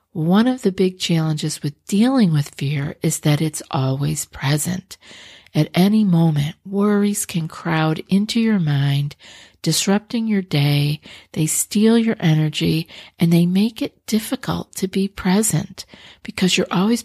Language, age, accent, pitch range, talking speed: English, 50-69, American, 155-195 Hz, 145 wpm